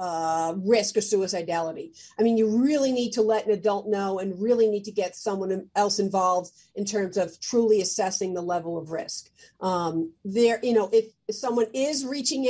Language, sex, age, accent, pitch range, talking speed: English, female, 50-69, American, 185-225 Hz, 190 wpm